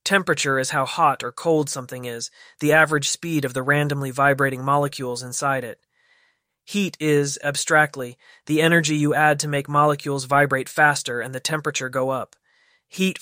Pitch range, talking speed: 125-150 Hz, 165 wpm